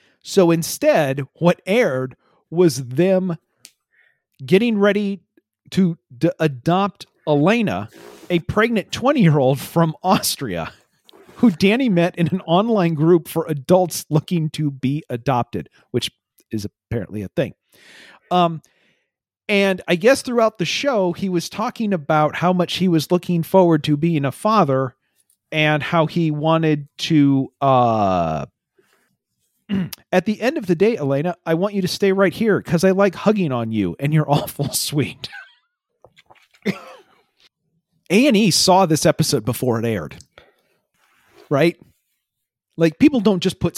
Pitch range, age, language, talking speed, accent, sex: 145-190 Hz, 40-59, English, 135 wpm, American, male